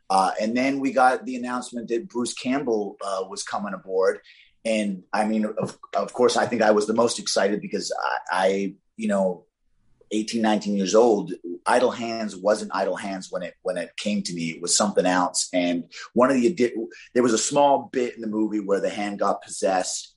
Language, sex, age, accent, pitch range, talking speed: English, male, 30-49, American, 95-115 Hz, 205 wpm